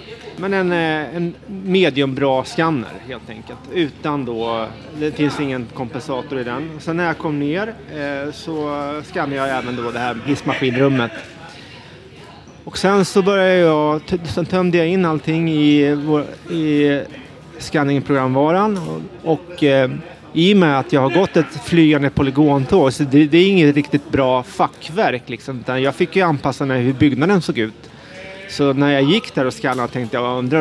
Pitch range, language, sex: 135-170 Hz, Swedish, male